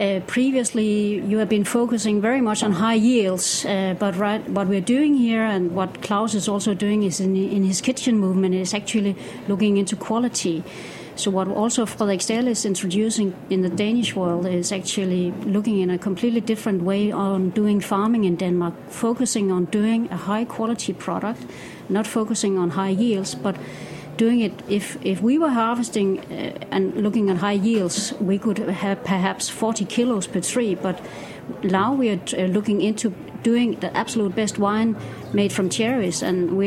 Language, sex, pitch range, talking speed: English, female, 195-225 Hz, 175 wpm